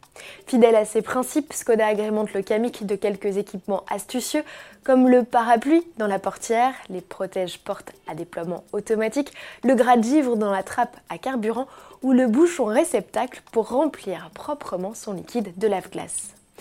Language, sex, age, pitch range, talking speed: French, female, 20-39, 200-265 Hz, 150 wpm